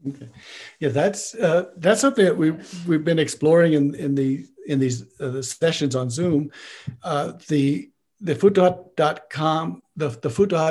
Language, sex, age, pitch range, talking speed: English, male, 60-79, 145-180 Hz, 145 wpm